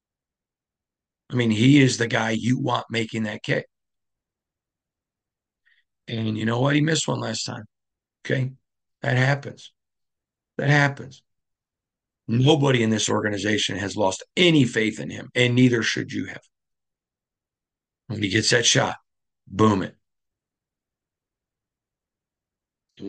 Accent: American